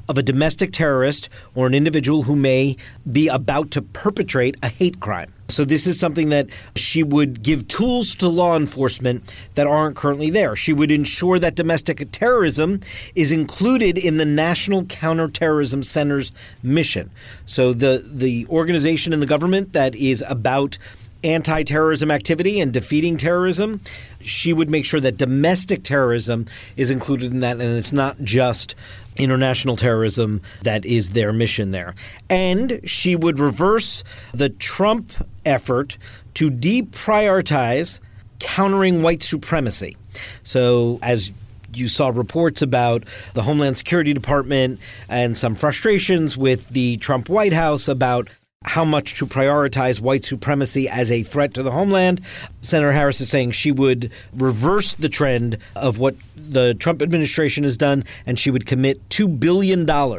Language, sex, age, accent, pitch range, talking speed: English, male, 40-59, American, 120-160 Hz, 150 wpm